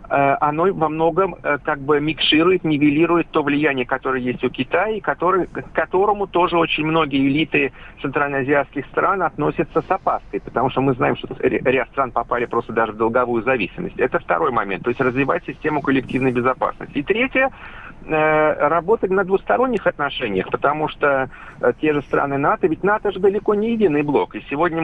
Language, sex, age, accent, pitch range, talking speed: Russian, male, 40-59, native, 140-185 Hz, 165 wpm